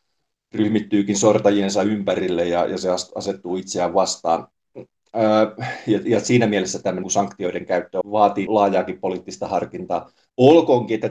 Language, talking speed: Finnish, 120 wpm